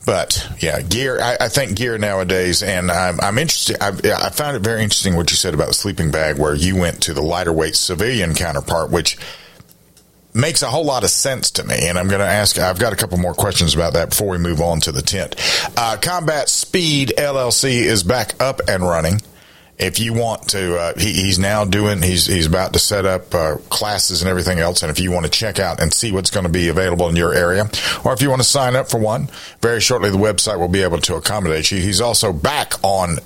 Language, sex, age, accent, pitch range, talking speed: English, male, 40-59, American, 85-105 Hz, 240 wpm